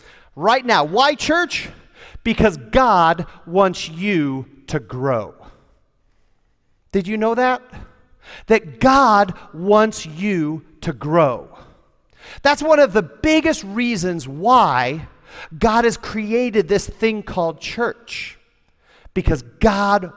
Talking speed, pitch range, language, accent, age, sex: 105 wpm, 160-230 Hz, English, American, 40-59, male